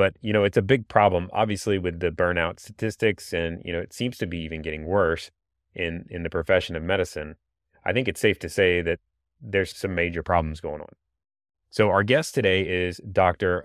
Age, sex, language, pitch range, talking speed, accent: 30-49, male, English, 85-110 Hz, 205 wpm, American